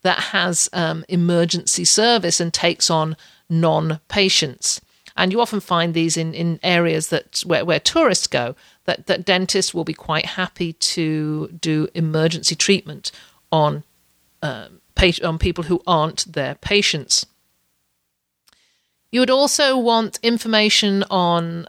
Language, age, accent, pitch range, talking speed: English, 50-69, British, 160-195 Hz, 135 wpm